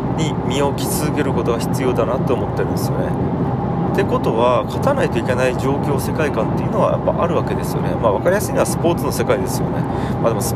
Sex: male